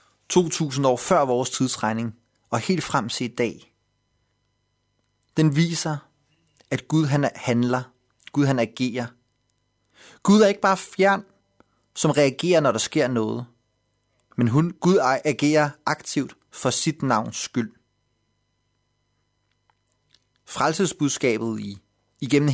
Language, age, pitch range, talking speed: Danish, 30-49, 110-145 Hz, 115 wpm